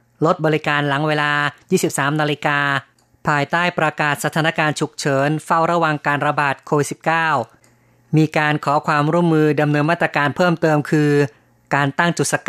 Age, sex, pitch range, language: 30-49, female, 145-165 Hz, Thai